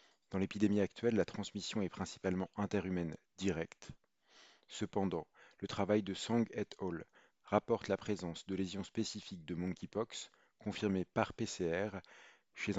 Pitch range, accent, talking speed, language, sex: 95-110 Hz, French, 130 wpm, French, male